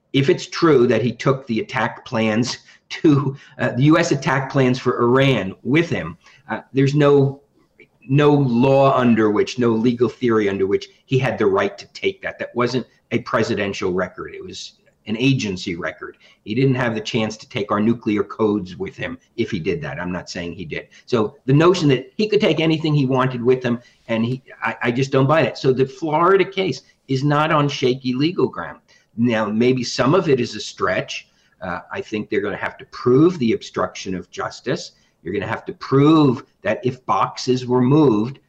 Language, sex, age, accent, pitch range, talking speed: English, male, 50-69, American, 120-145 Hz, 205 wpm